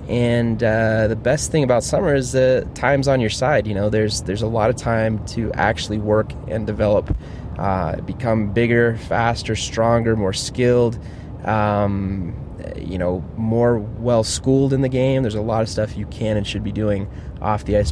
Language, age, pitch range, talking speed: English, 20-39, 105-120 Hz, 190 wpm